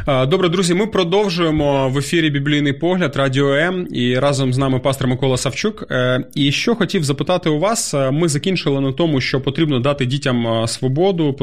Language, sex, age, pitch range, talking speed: Ukrainian, male, 30-49, 115-145 Hz, 170 wpm